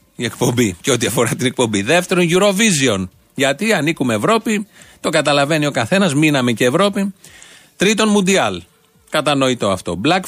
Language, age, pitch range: Greek, 40-59, 125-180 Hz